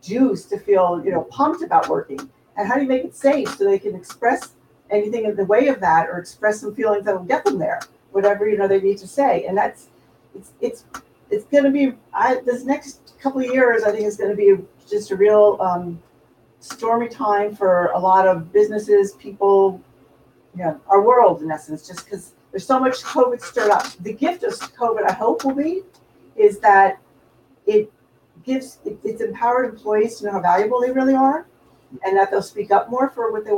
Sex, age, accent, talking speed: female, 50-69, American, 205 wpm